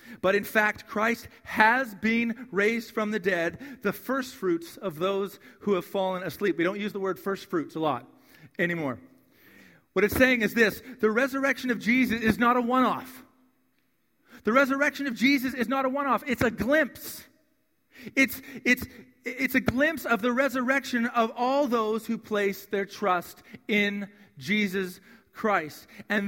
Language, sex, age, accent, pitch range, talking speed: English, male, 40-59, American, 185-255 Hz, 160 wpm